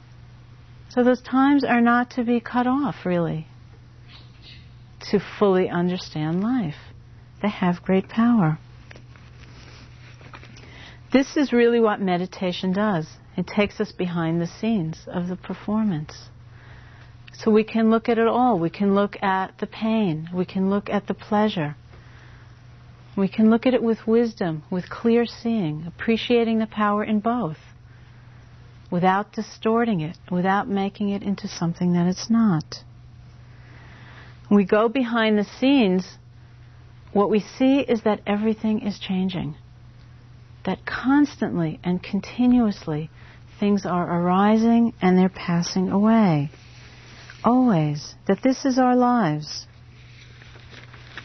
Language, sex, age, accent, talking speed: English, female, 50-69, American, 130 wpm